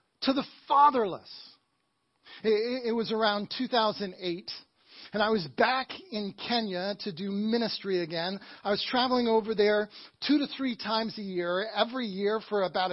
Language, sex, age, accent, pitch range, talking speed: English, male, 40-59, American, 195-245 Hz, 150 wpm